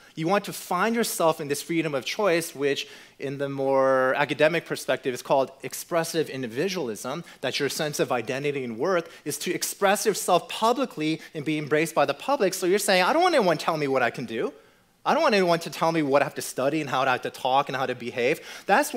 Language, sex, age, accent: English, male, 30-49, American